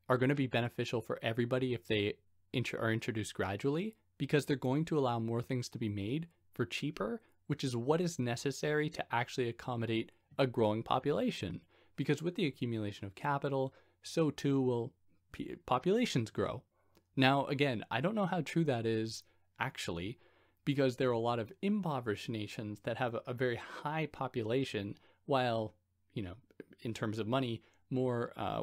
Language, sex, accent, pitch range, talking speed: English, male, American, 110-140 Hz, 165 wpm